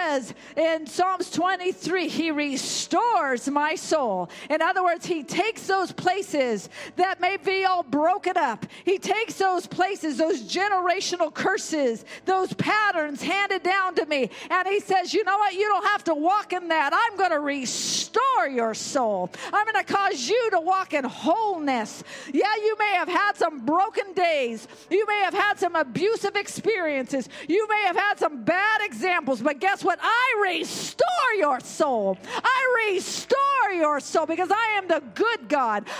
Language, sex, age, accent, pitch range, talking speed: English, female, 50-69, American, 275-385 Hz, 170 wpm